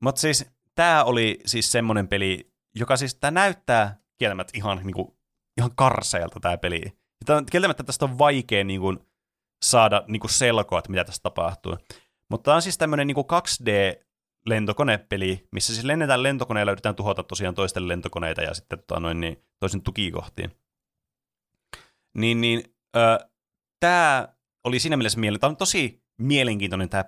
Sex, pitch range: male, 95-125 Hz